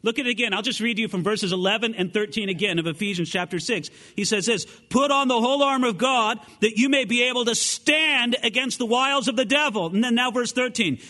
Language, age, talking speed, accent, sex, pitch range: English, 40-59, 250 wpm, American, male, 160-245 Hz